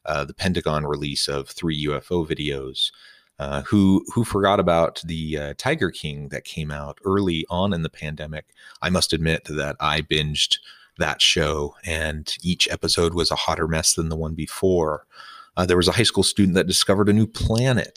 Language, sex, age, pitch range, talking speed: English, male, 30-49, 75-95 Hz, 185 wpm